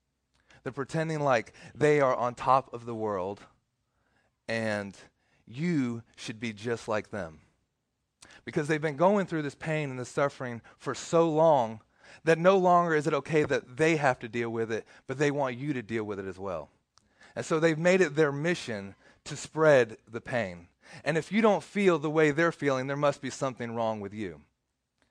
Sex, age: male, 30-49